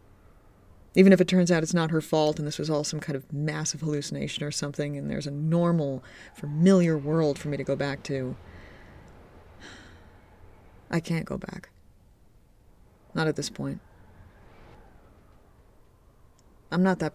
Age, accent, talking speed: 30-49, American, 150 wpm